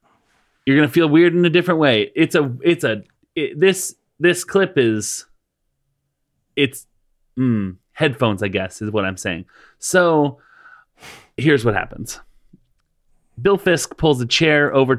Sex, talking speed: male, 145 wpm